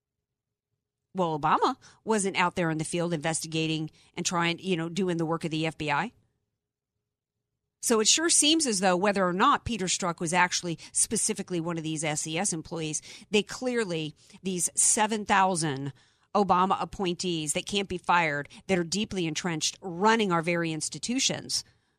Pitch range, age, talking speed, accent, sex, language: 165-220 Hz, 40-59, 155 wpm, American, female, English